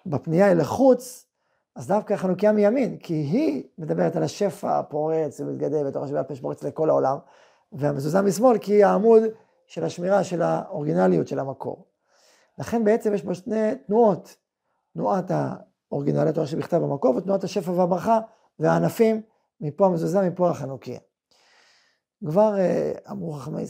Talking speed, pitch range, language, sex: 130 wpm, 145-200 Hz, Hebrew, male